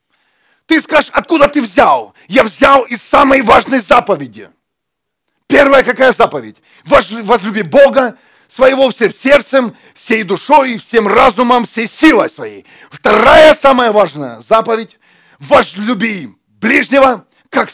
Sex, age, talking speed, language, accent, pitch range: male, 40-59, 110 wpm, Russian, native, 190-265 Hz